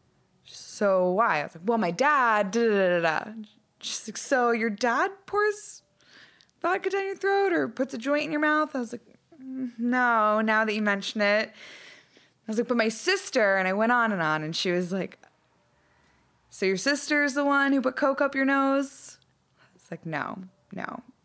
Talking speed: 205 wpm